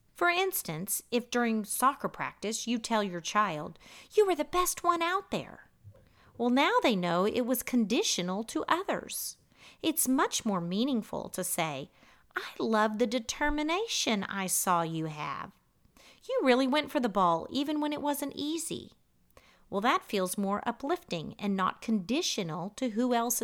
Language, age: English, 40-59